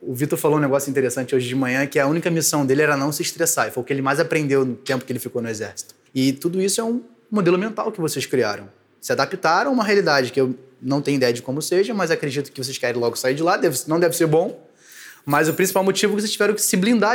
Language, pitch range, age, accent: Portuguese, 145-195 Hz, 20-39, Brazilian